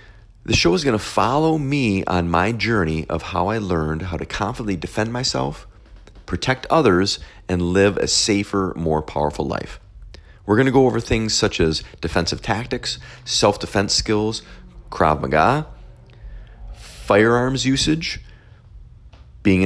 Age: 40-59